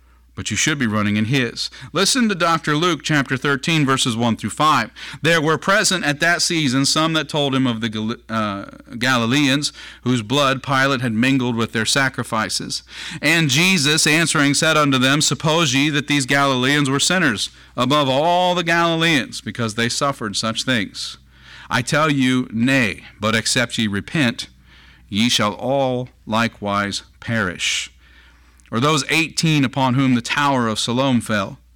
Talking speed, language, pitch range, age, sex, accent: 160 wpm, English, 110-150 Hz, 40-59, male, American